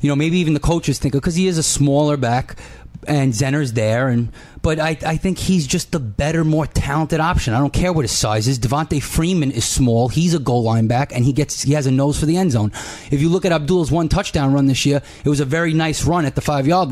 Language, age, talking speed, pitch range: English, 30-49, 260 wpm, 135-170 Hz